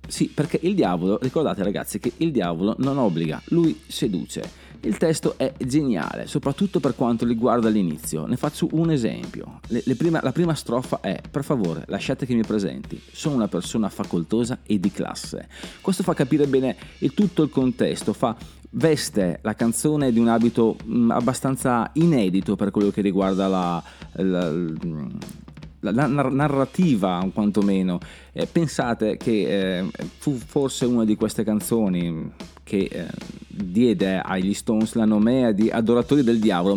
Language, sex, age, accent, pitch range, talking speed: Italian, male, 30-49, native, 100-140 Hz, 155 wpm